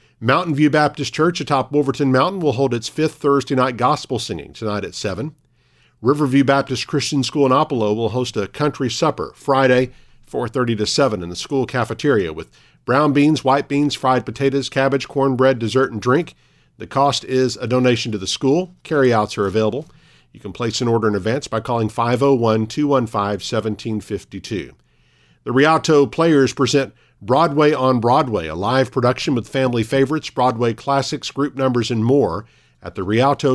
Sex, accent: male, American